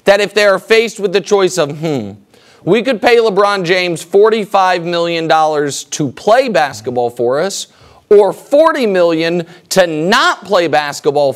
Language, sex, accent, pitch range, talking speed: English, male, American, 170-225 Hz, 155 wpm